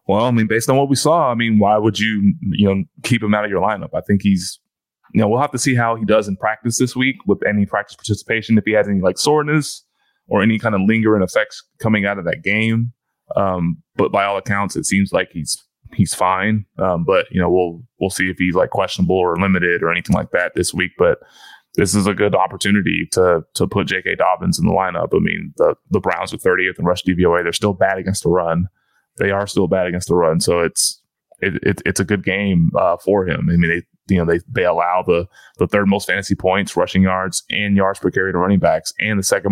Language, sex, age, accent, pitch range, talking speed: English, male, 20-39, American, 95-110 Hz, 245 wpm